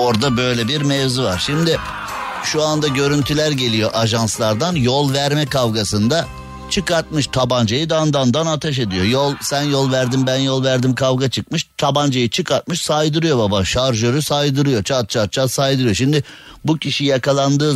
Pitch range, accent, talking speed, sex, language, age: 125-155 Hz, native, 150 wpm, male, Turkish, 50-69